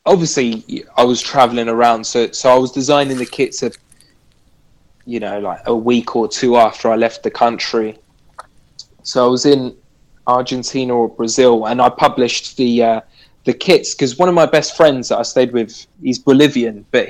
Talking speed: 185 wpm